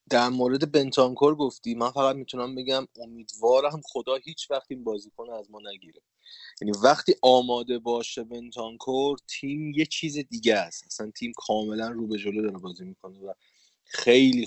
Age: 30-49